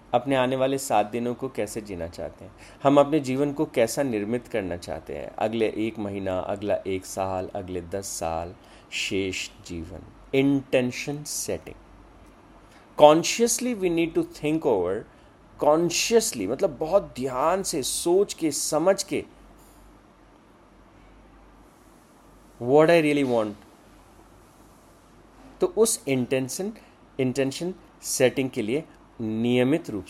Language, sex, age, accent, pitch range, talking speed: Hindi, male, 30-49, native, 105-155 Hz, 120 wpm